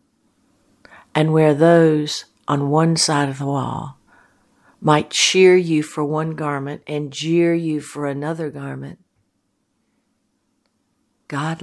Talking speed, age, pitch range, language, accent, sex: 115 wpm, 60-79, 135-155 Hz, English, American, female